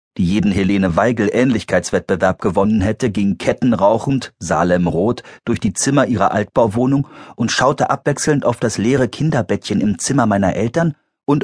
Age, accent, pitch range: 40-59, German, 90-130 Hz